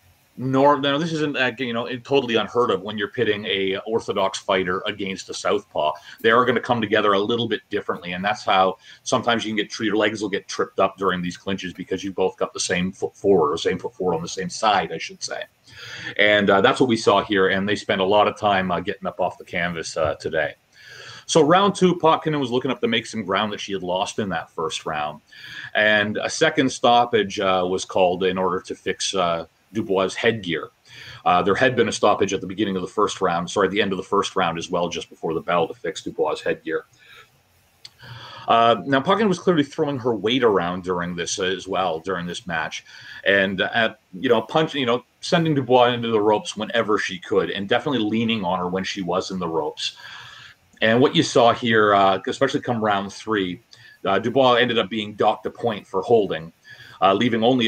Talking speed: 225 wpm